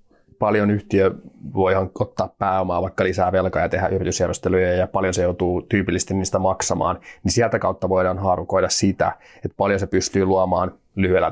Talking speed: 160 wpm